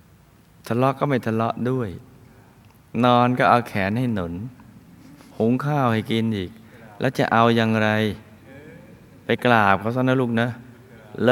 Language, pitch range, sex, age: Thai, 105-130 Hz, male, 20-39